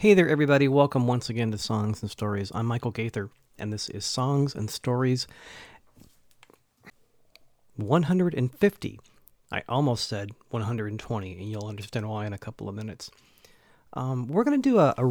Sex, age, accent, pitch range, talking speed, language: male, 40-59, American, 110-135 Hz, 160 wpm, English